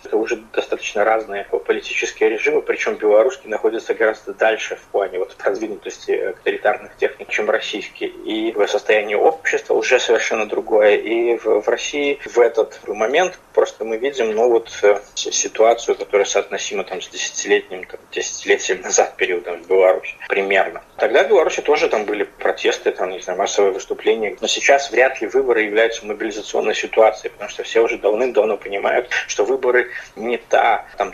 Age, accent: 20-39, native